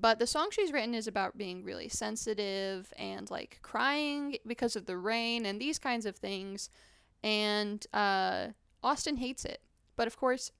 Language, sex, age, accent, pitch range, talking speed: English, female, 10-29, American, 200-245 Hz, 170 wpm